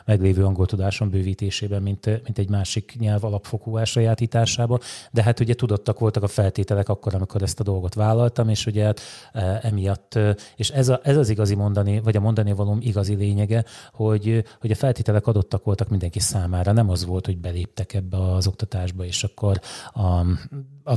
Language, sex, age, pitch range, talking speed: Hungarian, male, 30-49, 100-130 Hz, 170 wpm